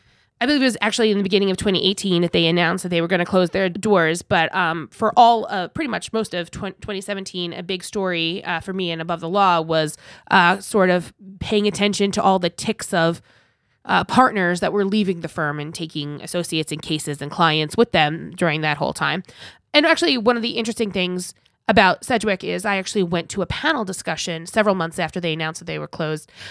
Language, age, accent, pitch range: English, 20-39, American, 165-205 Hz